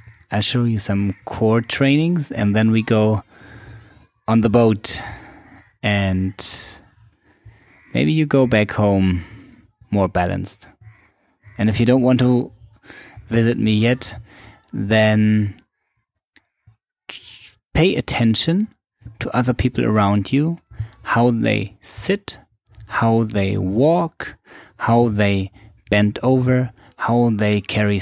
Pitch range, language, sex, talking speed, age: 100-120 Hz, English, male, 110 wpm, 20-39